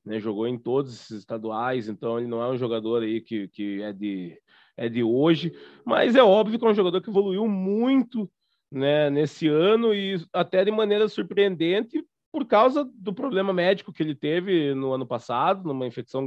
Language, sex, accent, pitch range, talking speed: Portuguese, male, Brazilian, 120-180 Hz, 190 wpm